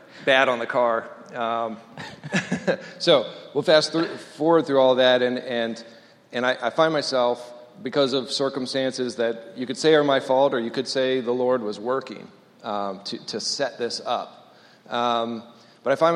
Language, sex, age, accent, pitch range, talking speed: English, male, 40-59, American, 115-140 Hz, 180 wpm